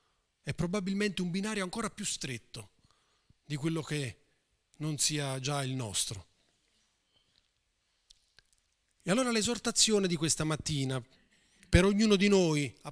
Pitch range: 115-170 Hz